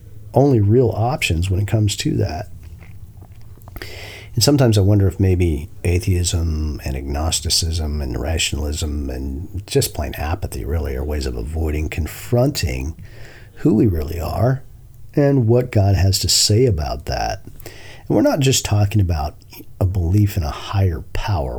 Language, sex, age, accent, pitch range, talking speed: English, male, 50-69, American, 85-105 Hz, 145 wpm